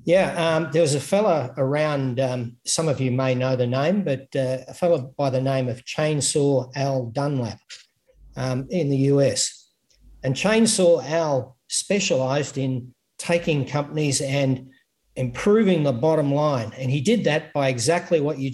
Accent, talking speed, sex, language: Australian, 160 wpm, male, English